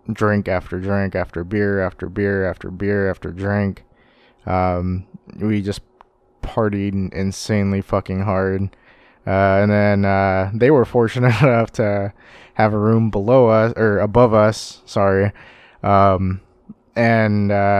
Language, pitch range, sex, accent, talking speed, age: English, 95-110 Hz, male, American, 135 wpm, 20-39